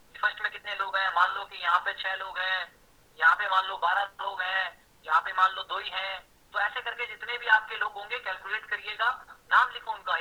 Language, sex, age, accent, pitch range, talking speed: Hindi, male, 30-49, native, 195-230 Hz, 240 wpm